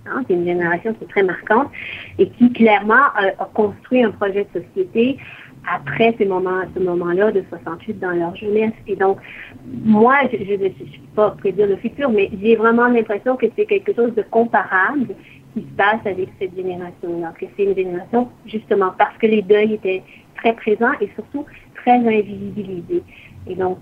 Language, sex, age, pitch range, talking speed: French, female, 40-59, 190-225 Hz, 180 wpm